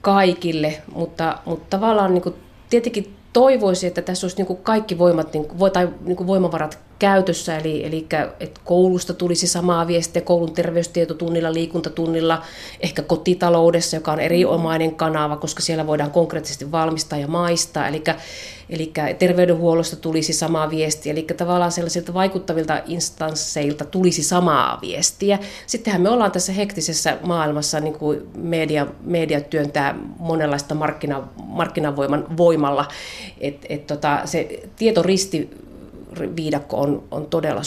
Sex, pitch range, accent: female, 155-180 Hz, native